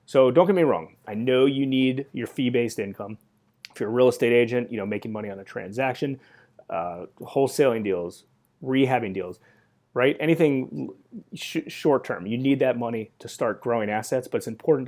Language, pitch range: English, 110-135 Hz